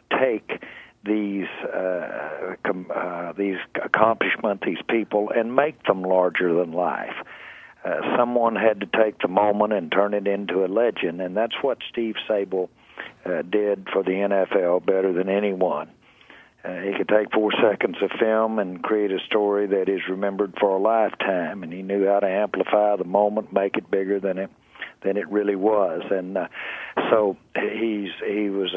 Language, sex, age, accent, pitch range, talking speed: English, male, 60-79, American, 100-110 Hz, 170 wpm